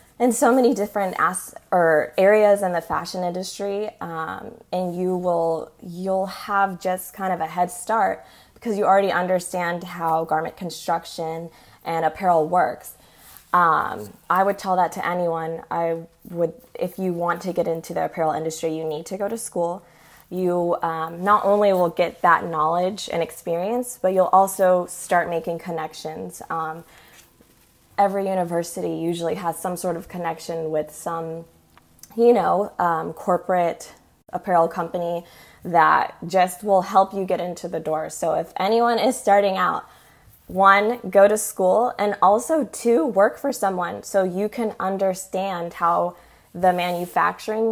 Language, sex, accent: English, female, American